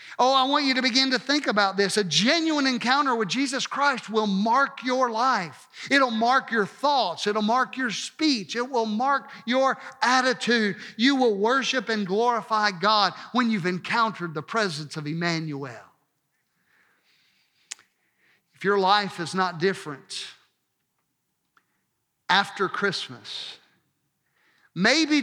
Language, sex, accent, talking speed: English, male, American, 130 wpm